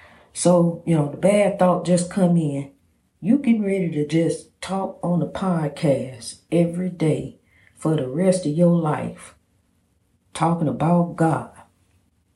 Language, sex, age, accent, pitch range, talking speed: English, female, 40-59, American, 150-195 Hz, 140 wpm